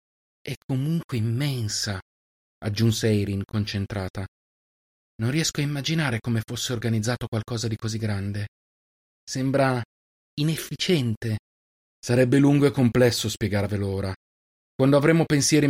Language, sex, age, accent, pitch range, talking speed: Italian, male, 30-49, native, 100-130 Hz, 105 wpm